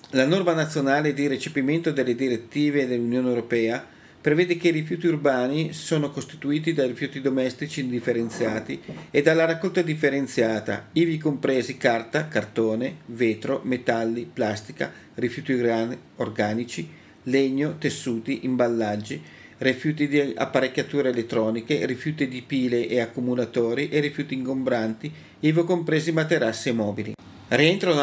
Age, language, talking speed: 40-59, Italian, 115 wpm